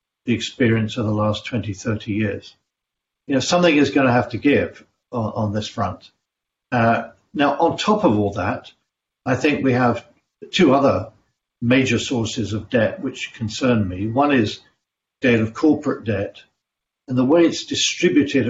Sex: male